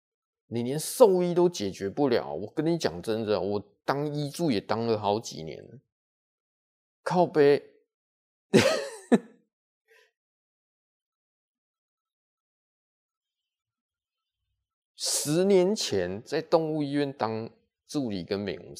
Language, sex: Chinese, male